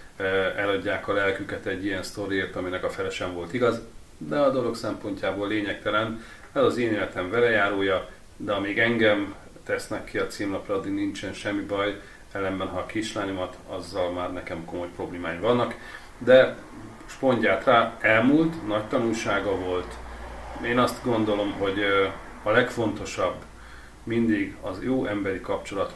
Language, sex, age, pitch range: Hungarian, male, 40-59, 95-115 Hz